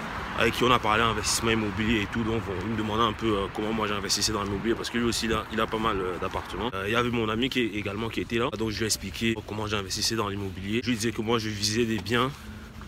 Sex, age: male, 30-49